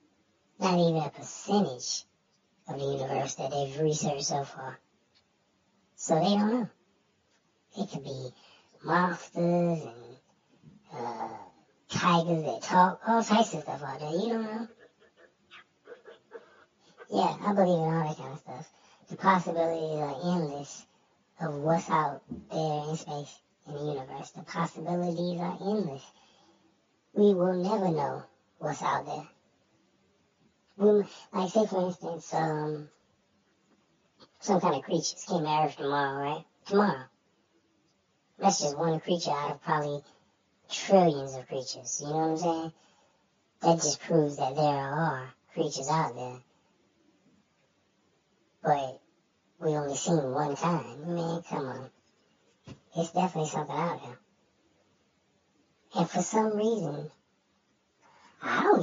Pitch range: 145-185 Hz